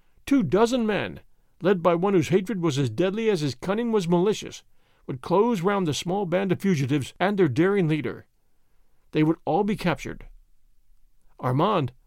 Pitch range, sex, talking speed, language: 160-205 Hz, male, 170 wpm, English